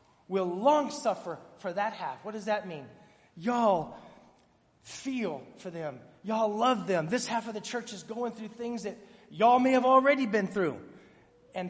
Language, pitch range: English, 180-255 Hz